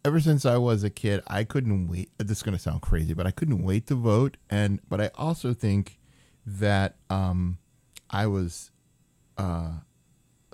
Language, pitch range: English, 95-120 Hz